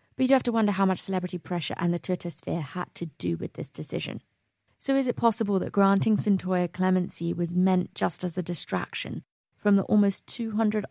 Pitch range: 175-215 Hz